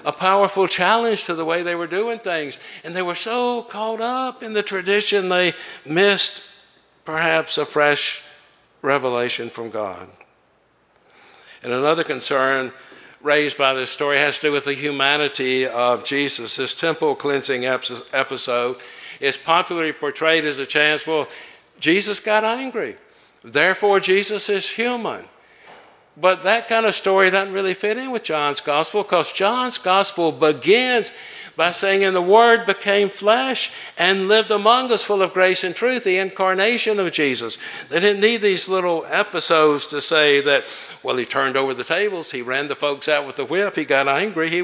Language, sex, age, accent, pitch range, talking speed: English, male, 60-79, American, 145-205 Hz, 165 wpm